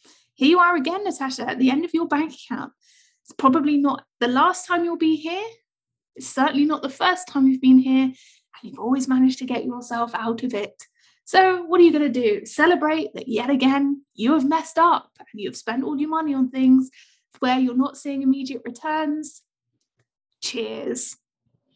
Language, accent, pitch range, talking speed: English, British, 245-310 Hz, 195 wpm